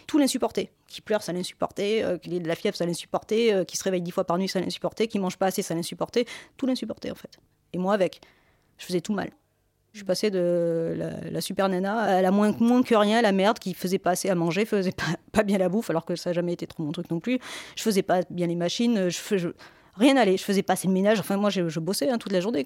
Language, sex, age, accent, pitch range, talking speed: French, female, 30-49, French, 175-215 Hz, 275 wpm